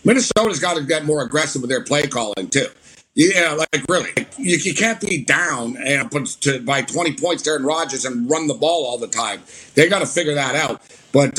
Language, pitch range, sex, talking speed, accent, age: English, 150-190 Hz, male, 215 wpm, American, 50-69